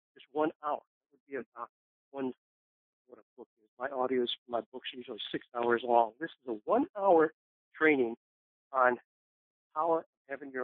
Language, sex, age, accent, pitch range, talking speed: English, male, 50-69, American, 125-155 Hz, 170 wpm